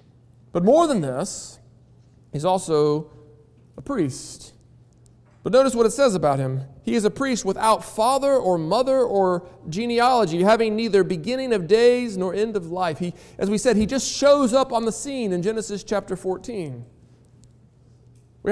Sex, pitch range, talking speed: male, 180-245 Hz, 160 wpm